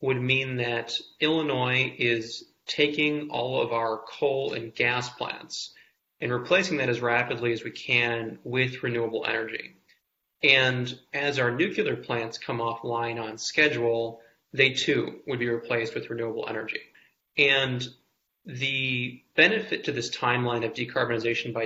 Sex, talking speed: male, 140 wpm